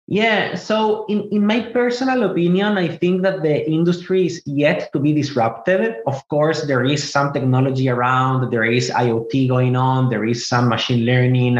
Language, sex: English, male